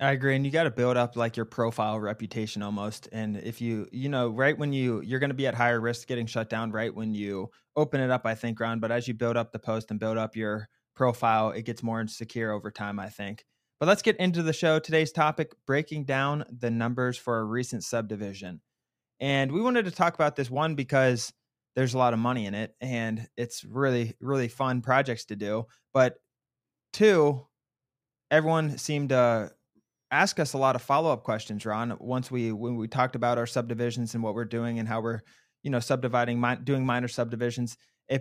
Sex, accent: male, American